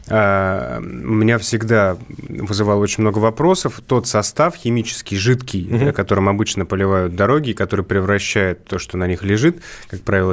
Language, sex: Russian, male